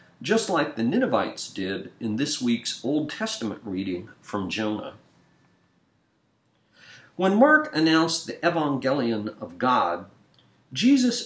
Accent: American